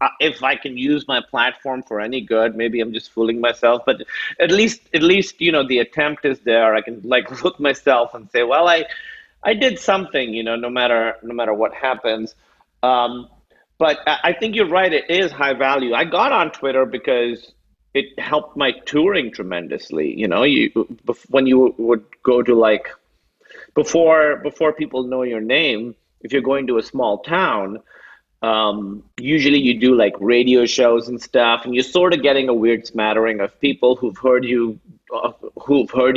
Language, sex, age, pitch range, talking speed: English, male, 40-59, 115-150 Hz, 185 wpm